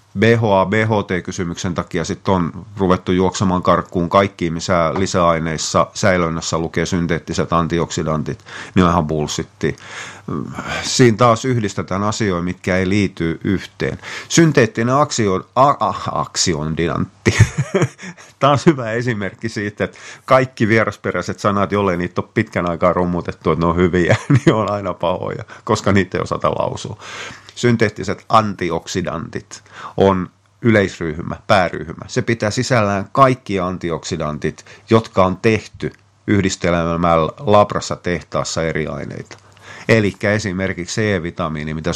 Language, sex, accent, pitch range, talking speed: Finnish, male, native, 85-110 Hz, 115 wpm